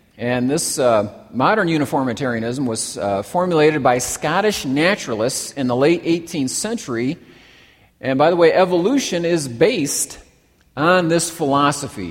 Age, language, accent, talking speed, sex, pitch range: 50-69, English, American, 130 wpm, male, 130-170 Hz